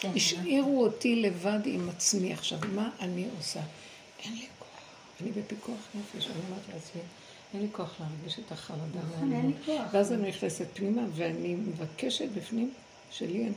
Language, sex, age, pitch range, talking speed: Hebrew, female, 60-79, 175-235 Hz, 160 wpm